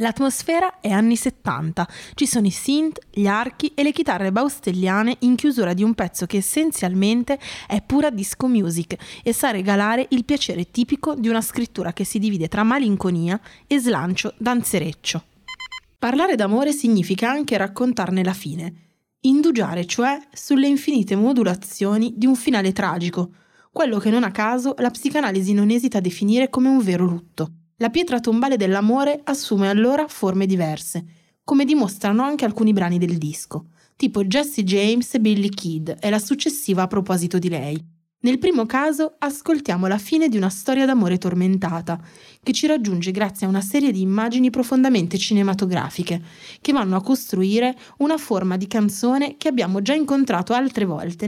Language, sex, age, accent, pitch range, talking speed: Italian, female, 20-39, native, 185-265 Hz, 160 wpm